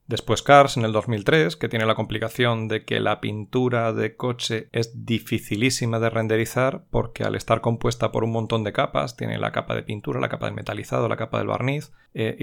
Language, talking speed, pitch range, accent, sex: Spanish, 205 wpm, 110-125 Hz, Spanish, male